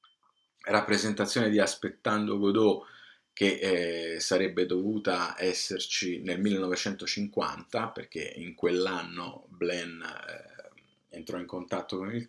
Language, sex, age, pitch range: Italian, male, 30-49, 90-105 Hz